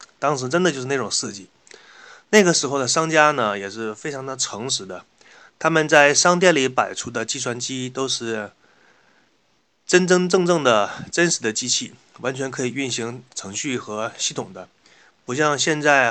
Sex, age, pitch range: male, 20-39, 115-145 Hz